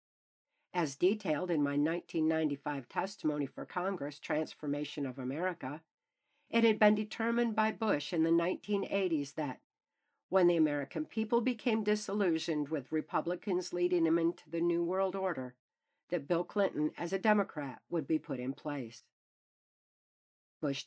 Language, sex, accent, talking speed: English, female, American, 140 wpm